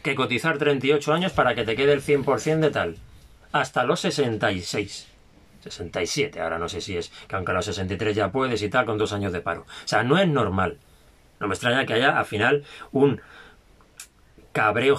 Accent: Spanish